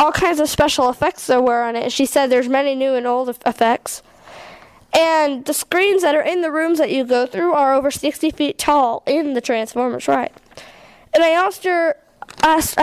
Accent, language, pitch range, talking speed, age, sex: American, English, 260-310 Hz, 200 wpm, 10-29, female